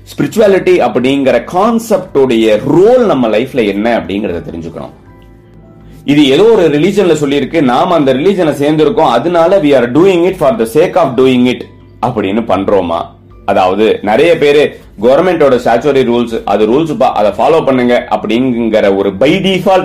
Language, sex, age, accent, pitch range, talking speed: Tamil, male, 30-49, native, 100-145 Hz, 45 wpm